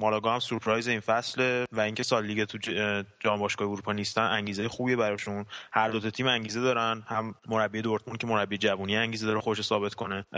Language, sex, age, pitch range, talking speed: Persian, male, 20-39, 105-120 Hz, 185 wpm